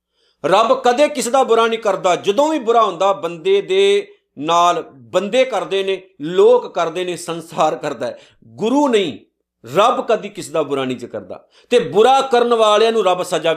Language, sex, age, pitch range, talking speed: Punjabi, male, 50-69, 165-235 Hz, 165 wpm